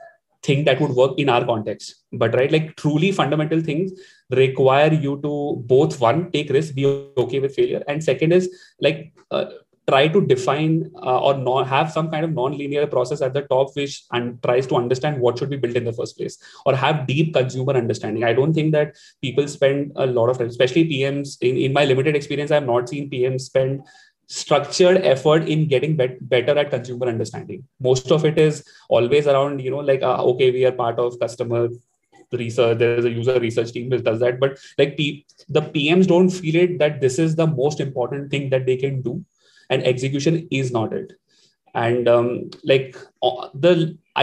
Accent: Indian